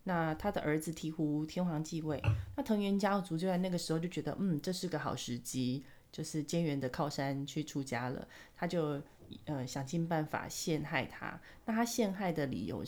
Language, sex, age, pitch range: Chinese, female, 20-39, 145-185 Hz